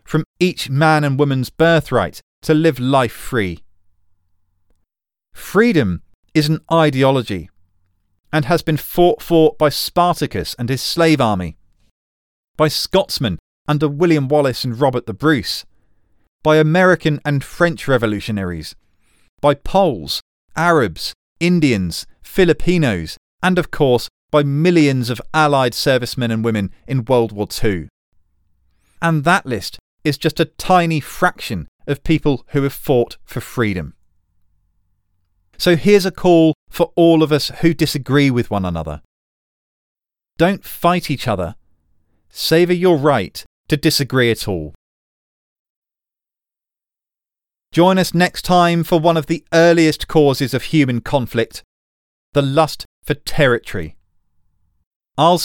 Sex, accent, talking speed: male, British, 125 wpm